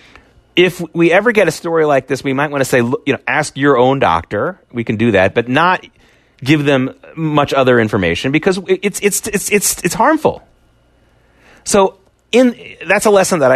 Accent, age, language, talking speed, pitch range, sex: American, 30-49, English, 190 wpm, 110-150 Hz, male